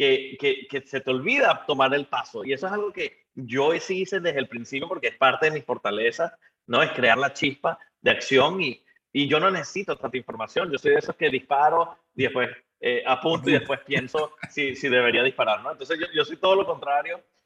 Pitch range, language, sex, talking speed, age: 135-200 Hz, Spanish, male, 225 wpm, 30-49